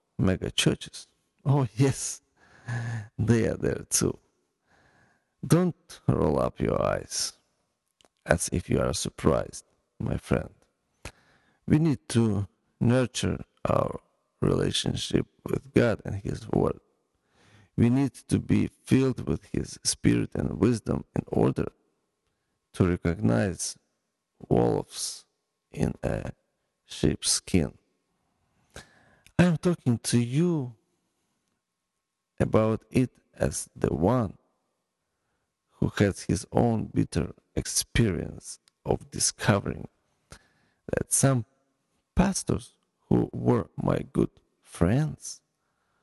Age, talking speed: 40-59, 100 wpm